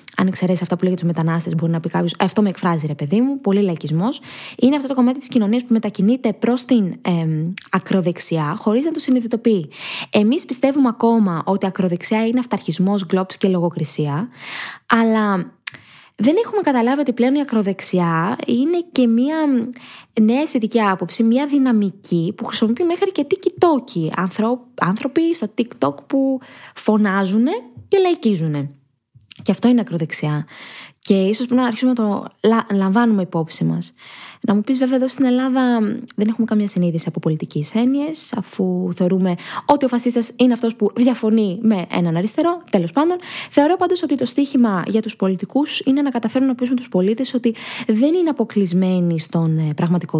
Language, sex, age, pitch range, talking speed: Greek, female, 20-39, 185-255 Hz, 165 wpm